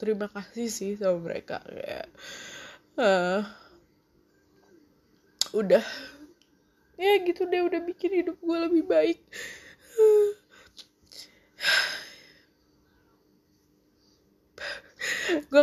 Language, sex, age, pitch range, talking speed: Indonesian, female, 20-39, 210-295 Hz, 70 wpm